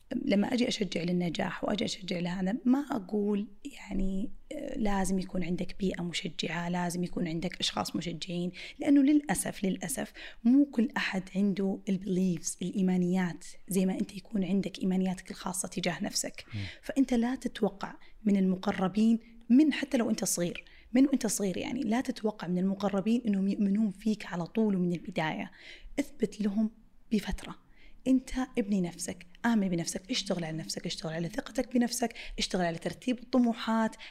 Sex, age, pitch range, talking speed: female, 30-49, 185-245 Hz, 145 wpm